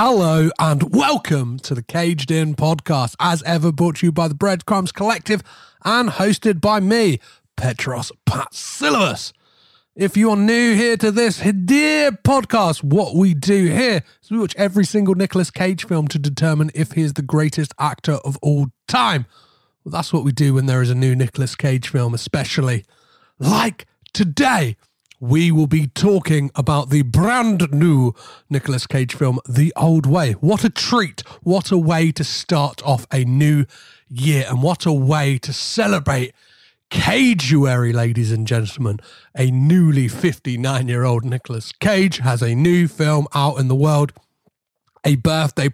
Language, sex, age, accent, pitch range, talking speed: English, male, 30-49, British, 135-185 Hz, 160 wpm